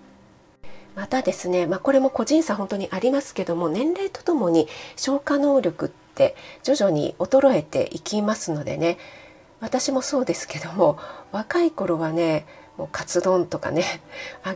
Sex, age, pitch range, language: female, 40-59, 170-265 Hz, Japanese